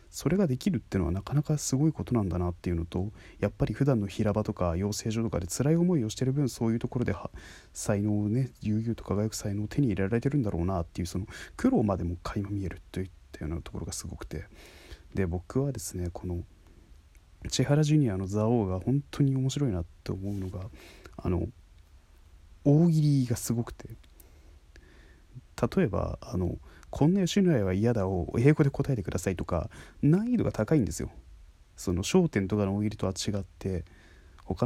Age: 20-39